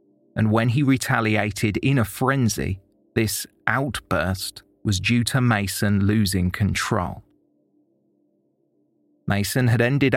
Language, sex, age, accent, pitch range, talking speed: English, male, 30-49, British, 105-130 Hz, 105 wpm